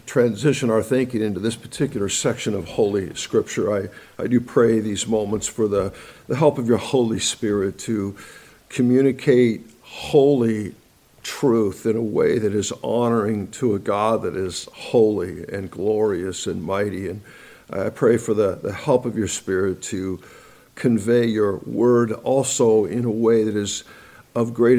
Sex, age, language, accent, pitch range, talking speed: male, 60-79, English, American, 105-125 Hz, 160 wpm